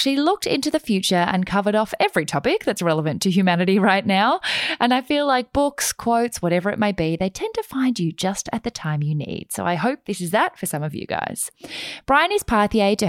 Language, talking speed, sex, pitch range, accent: English, 235 wpm, female, 160-240 Hz, Australian